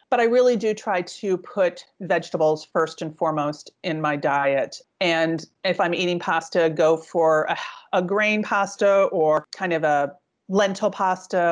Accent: American